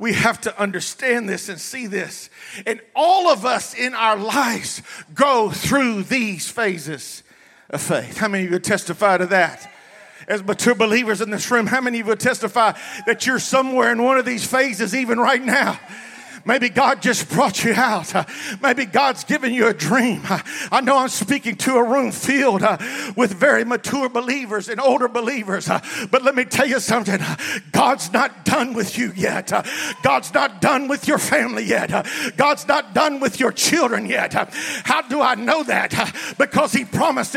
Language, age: English, 50-69